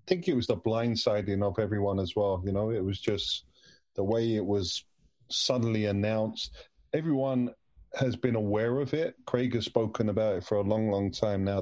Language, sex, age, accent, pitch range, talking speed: English, male, 30-49, British, 105-125 Hz, 195 wpm